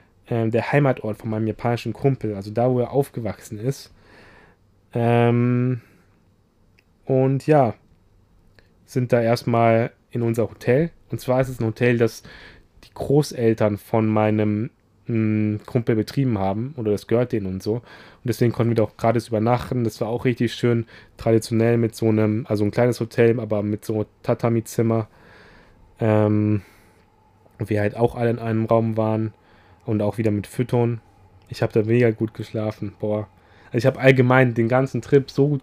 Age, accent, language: 10-29, German, German